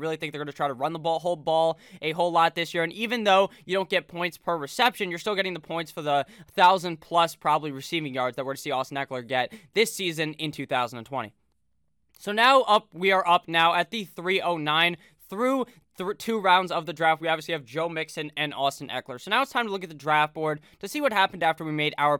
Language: English